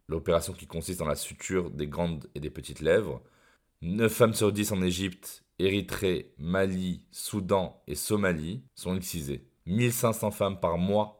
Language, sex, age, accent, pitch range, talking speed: French, male, 20-39, French, 85-105 Hz, 155 wpm